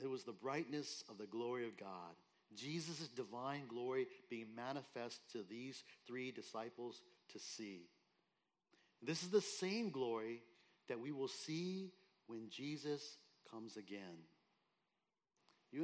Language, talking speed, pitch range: English, 130 wpm, 120-155 Hz